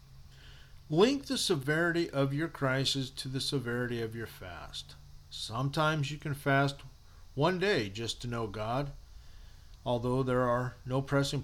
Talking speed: 140 wpm